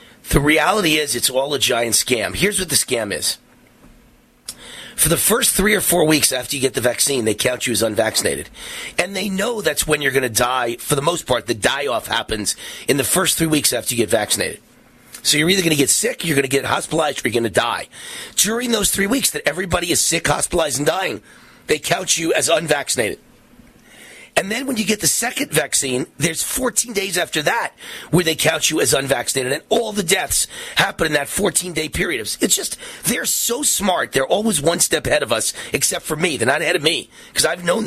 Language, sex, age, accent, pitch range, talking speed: English, male, 30-49, American, 145-215 Hz, 220 wpm